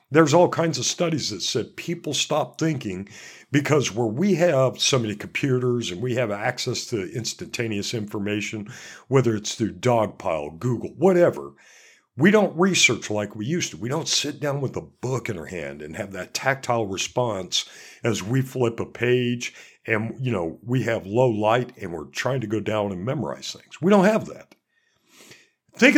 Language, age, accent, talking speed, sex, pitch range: English, 60-79, American, 180 wpm, male, 110-155 Hz